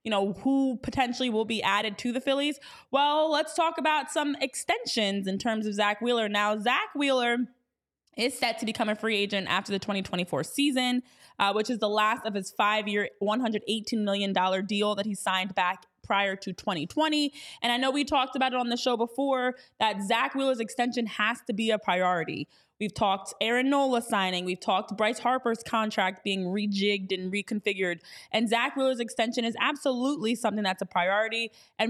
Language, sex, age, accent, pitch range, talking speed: English, female, 20-39, American, 205-255 Hz, 185 wpm